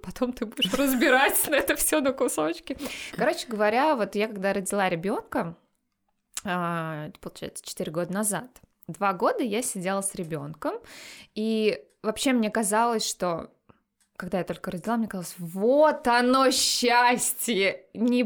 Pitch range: 185-255 Hz